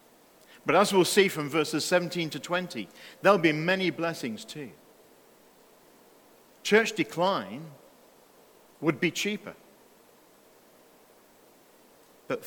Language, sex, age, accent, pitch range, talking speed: English, male, 50-69, British, 140-195 Hz, 95 wpm